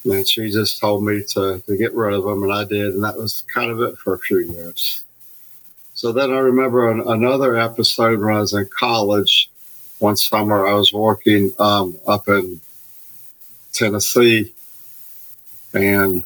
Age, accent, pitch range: 50-69, American, 100-115 Hz